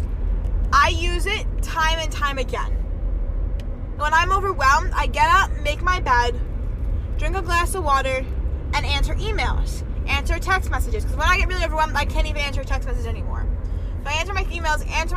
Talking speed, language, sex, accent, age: 185 wpm, English, female, American, 20-39